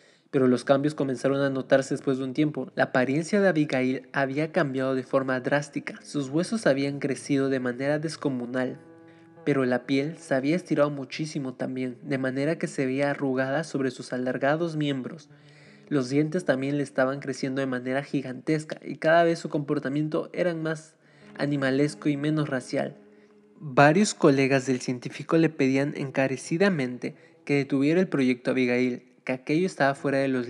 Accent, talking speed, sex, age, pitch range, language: Mexican, 160 wpm, male, 20-39, 130-155 Hz, Spanish